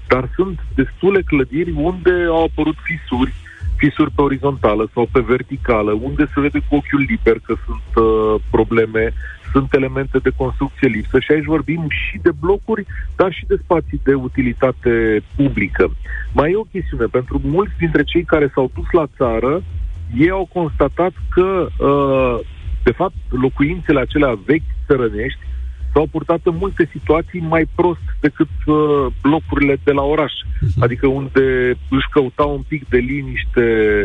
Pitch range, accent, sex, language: 120-165 Hz, native, male, Romanian